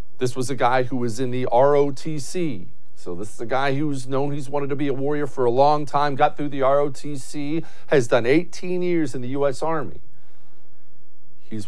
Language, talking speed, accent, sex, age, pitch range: English, 200 wpm, American, male, 50-69, 125-185 Hz